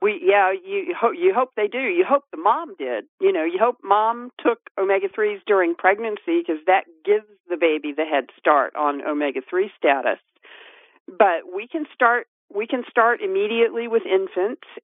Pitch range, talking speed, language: 165-260 Hz, 180 wpm, English